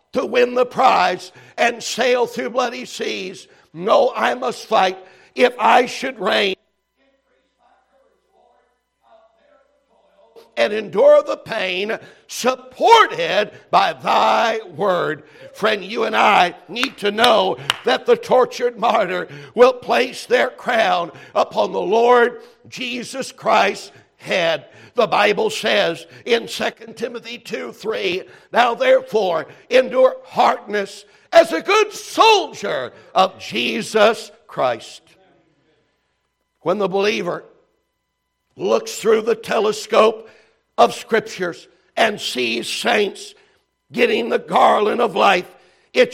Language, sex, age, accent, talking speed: English, male, 60-79, American, 105 wpm